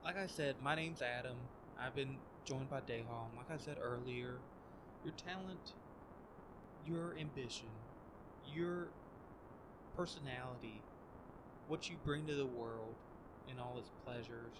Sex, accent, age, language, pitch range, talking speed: male, American, 20-39, English, 120-160 Hz, 130 wpm